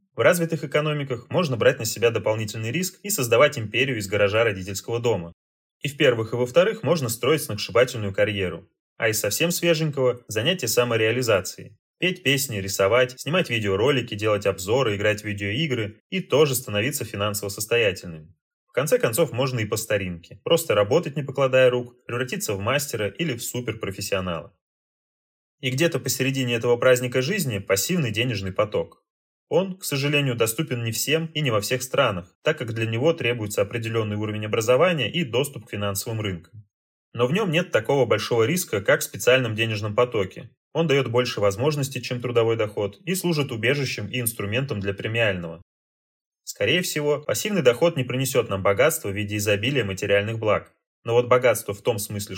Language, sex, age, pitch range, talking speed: Russian, male, 20-39, 105-145 Hz, 165 wpm